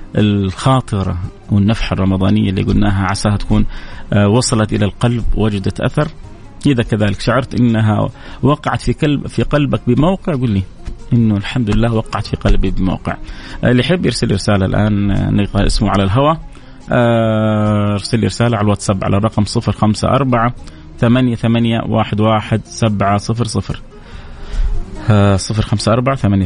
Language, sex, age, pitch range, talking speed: Arabic, male, 30-49, 100-115 Hz, 135 wpm